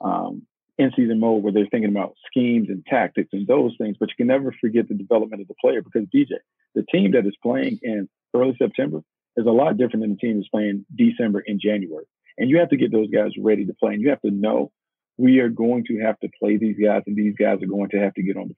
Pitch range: 105-125 Hz